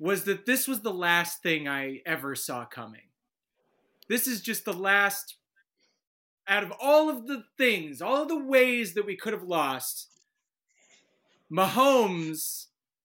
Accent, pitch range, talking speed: American, 170-245 Hz, 145 wpm